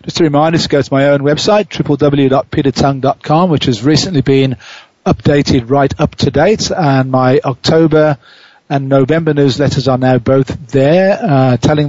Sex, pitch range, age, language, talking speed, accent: male, 135-155 Hz, 40-59, English, 165 wpm, British